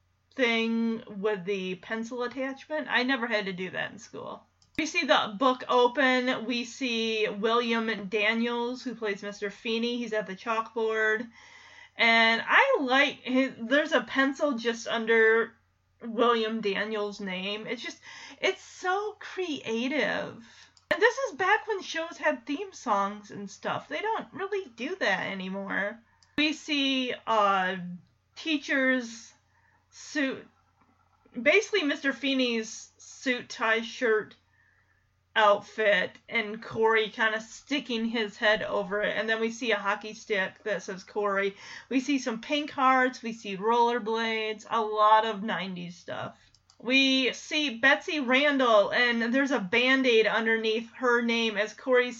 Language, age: English, 30-49